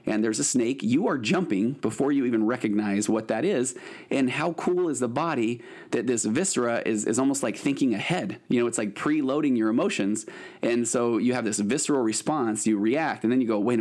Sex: male